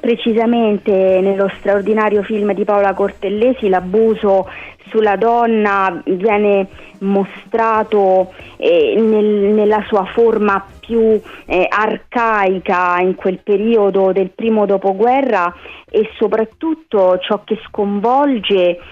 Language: Italian